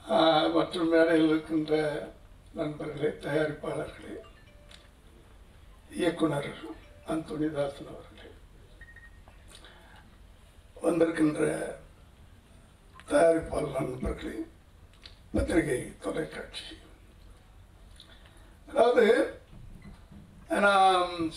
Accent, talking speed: native, 40 wpm